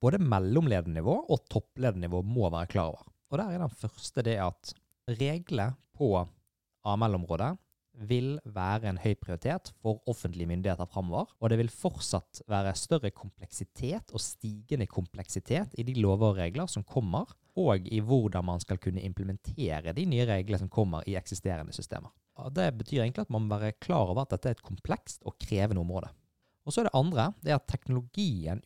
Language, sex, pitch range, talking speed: English, male, 95-125 Hz, 180 wpm